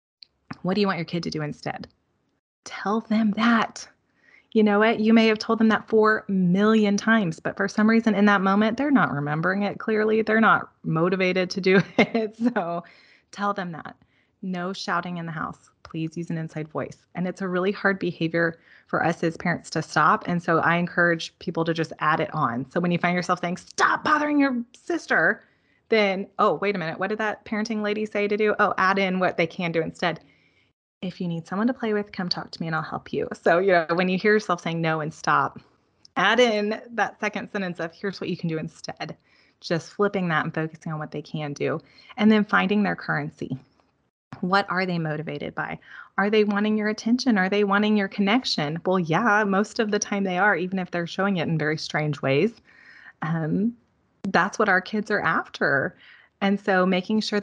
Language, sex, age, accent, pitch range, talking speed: English, female, 20-39, American, 170-215 Hz, 210 wpm